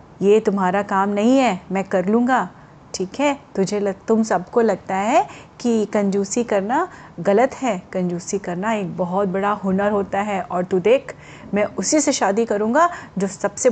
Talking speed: 170 wpm